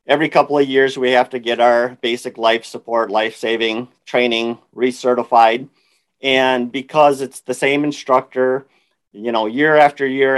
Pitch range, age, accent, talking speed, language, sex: 115-140 Hz, 50-69, American, 155 wpm, English, male